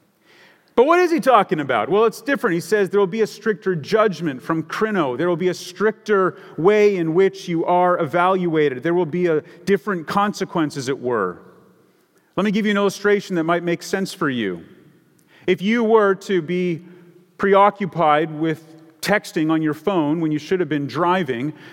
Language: English